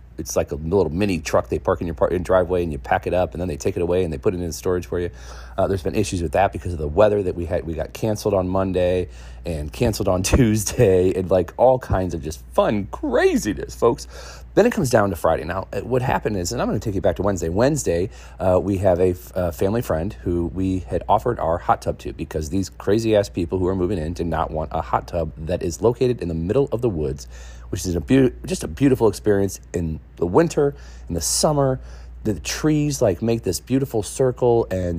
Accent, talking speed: American, 250 wpm